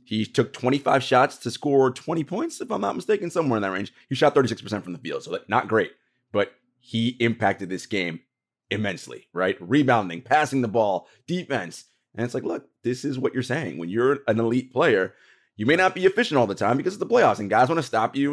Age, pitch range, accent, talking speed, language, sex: 30-49, 110-150 Hz, American, 225 wpm, English, male